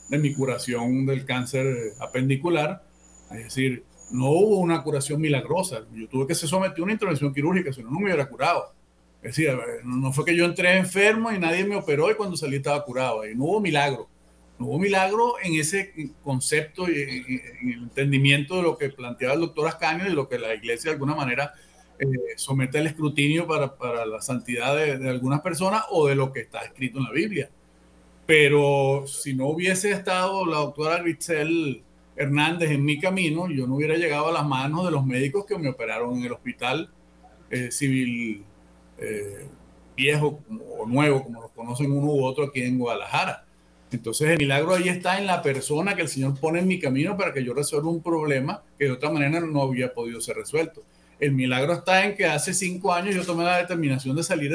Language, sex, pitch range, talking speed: Spanish, male, 130-165 Hz, 200 wpm